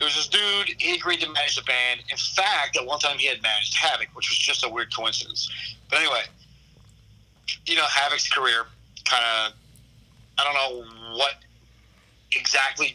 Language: English